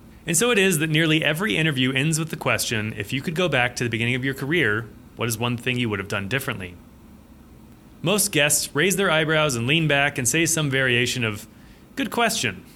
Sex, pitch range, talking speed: male, 120-160 Hz, 220 wpm